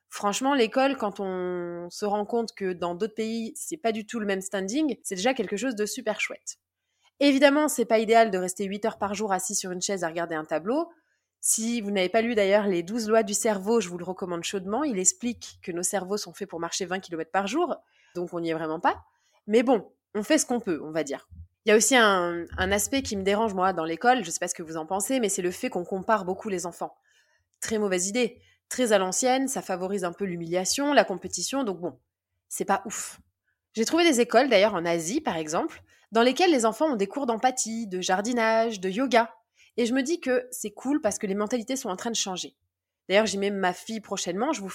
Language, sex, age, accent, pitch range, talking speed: French, female, 20-39, French, 185-240 Hz, 245 wpm